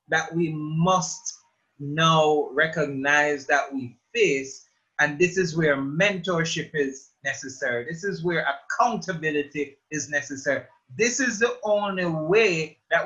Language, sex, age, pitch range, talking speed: English, male, 30-49, 155-195 Hz, 125 wpm